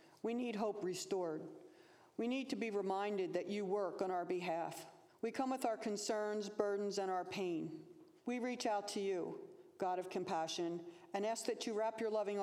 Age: 50-69